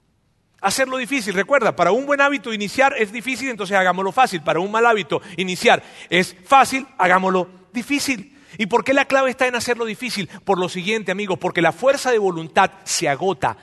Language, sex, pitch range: Spanish, male, 175-235 Hz